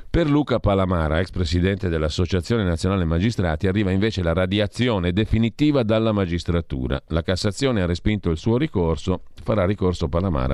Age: 40-59